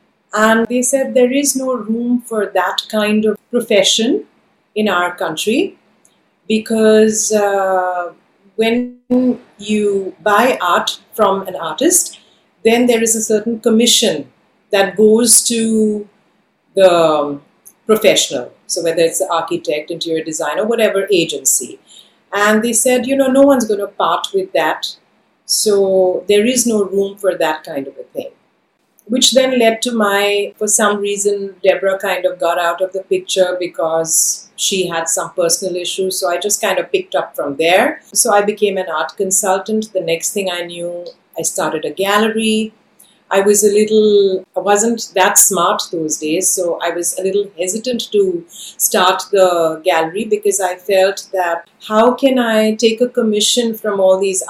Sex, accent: female, Indian